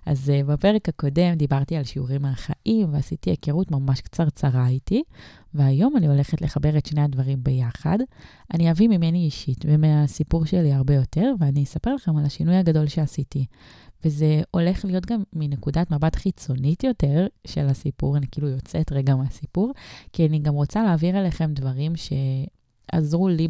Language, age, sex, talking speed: Hebrew, 20-39, female, 150 wpm